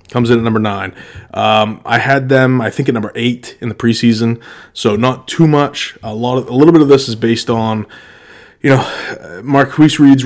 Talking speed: 210 wpm